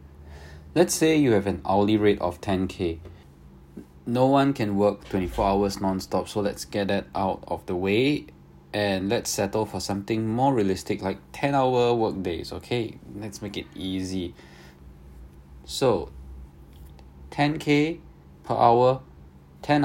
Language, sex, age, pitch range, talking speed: English, male, 20-39, 70-115 Hz, 140 wpm